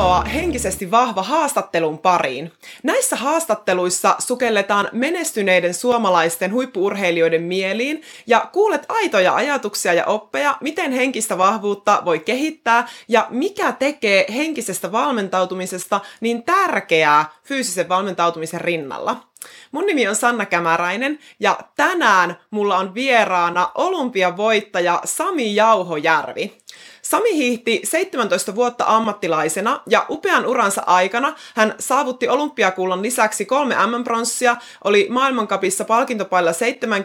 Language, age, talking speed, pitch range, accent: Finnish, 20-39, 105 wpm, 185-255 Hz, native